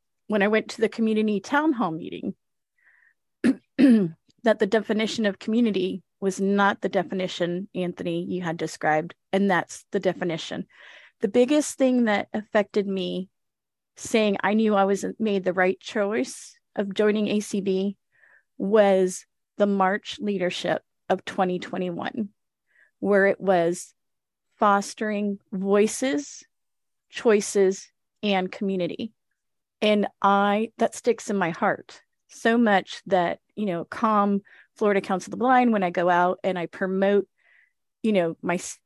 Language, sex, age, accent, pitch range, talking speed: English, female, 30-49, American, 190-220 Hz, 135 wpm